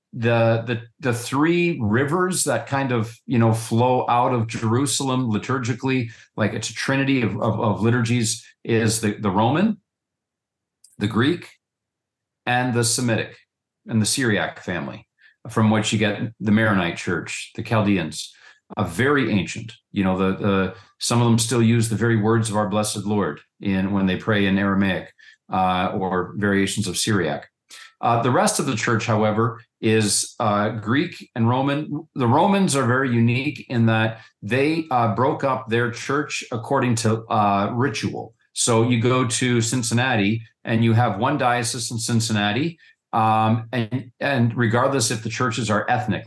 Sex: male